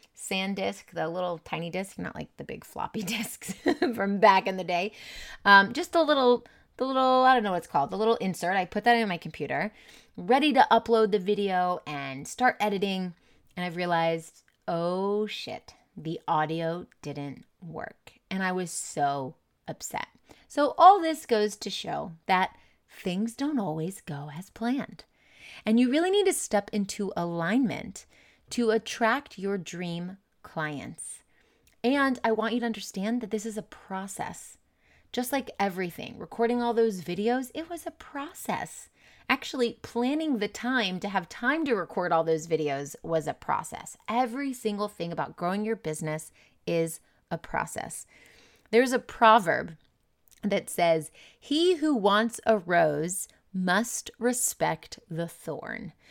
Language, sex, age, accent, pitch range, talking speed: English, female, 30-49, American, 175-240 Hz, 155 wpm